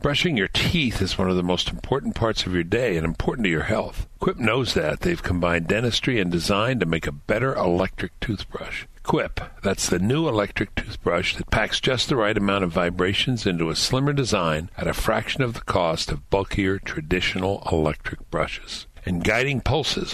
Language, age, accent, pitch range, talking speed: English, 60-79, American, 90-110 Hz, 190 wpm